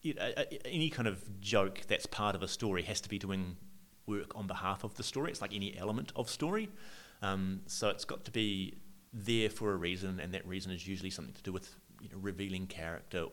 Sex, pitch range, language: male, 85-100 Hz, English